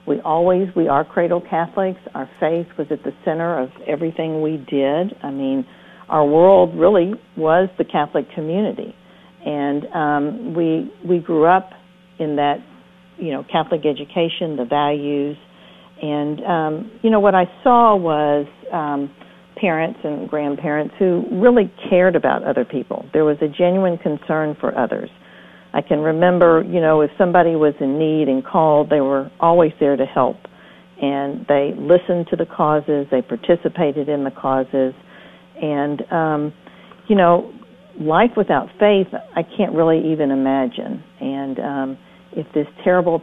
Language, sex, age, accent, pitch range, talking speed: English, female, 50-69, American, 145-180 Hz, 155 wpm